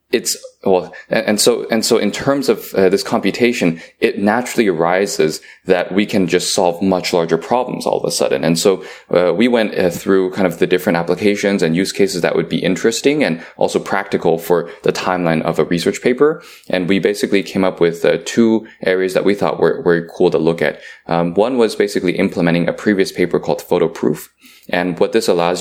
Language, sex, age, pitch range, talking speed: English, male, 20-39, 85-100 Hz, 210 wpm